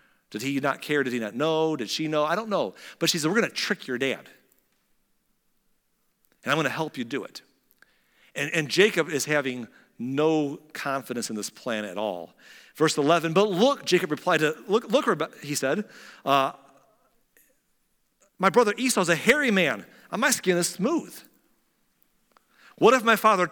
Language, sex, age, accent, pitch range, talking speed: English, male, 40-59, American, 130-180 Hz, 180 wpm